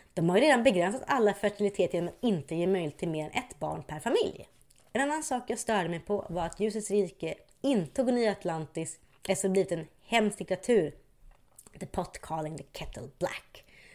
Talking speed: 200 wpm